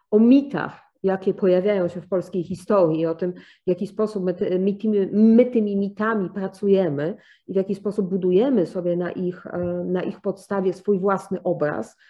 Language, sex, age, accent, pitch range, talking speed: English, female, 40-59, Polish, 180-225 Hz, 165 wpm